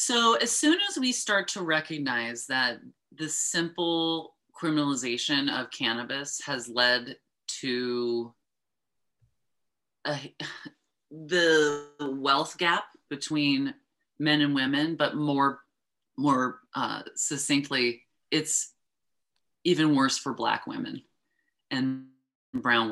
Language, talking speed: English, 100 wpm